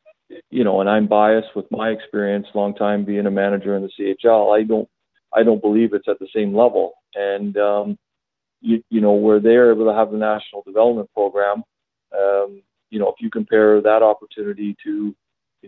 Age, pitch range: 40-59, 100-110 Hz